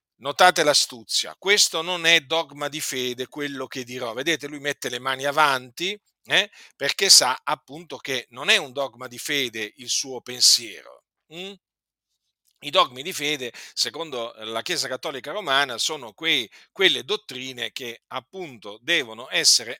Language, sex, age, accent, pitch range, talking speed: Italian, male, 50-69, native, 125-160 Hz, 150 wpm